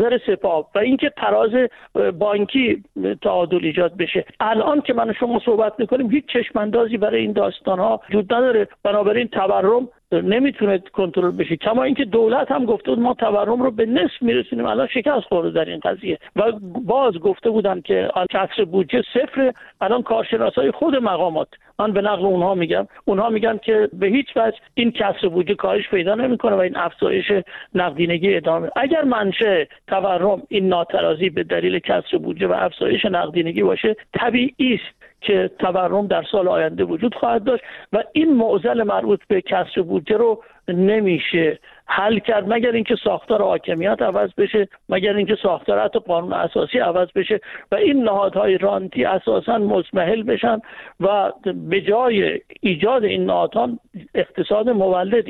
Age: 50-69